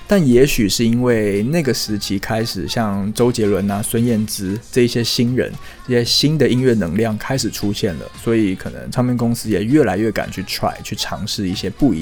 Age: 20-39